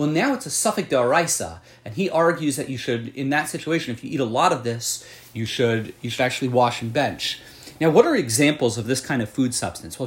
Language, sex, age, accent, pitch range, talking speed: English, male, 30-49, American, 120-155 Hz, 245 wpm